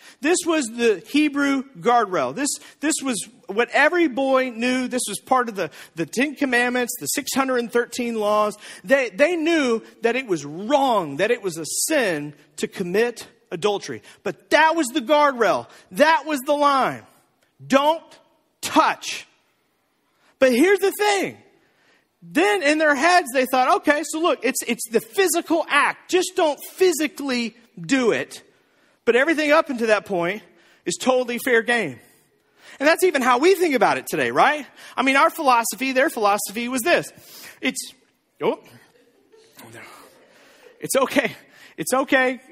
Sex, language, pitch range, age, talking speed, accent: male, English, 235-320 Hz, 40-59, 150 wpm, American